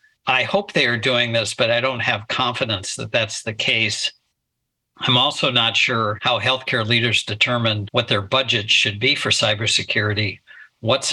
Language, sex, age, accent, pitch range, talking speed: English, male, 60-79, American, 105-125 Hz, 165 wpm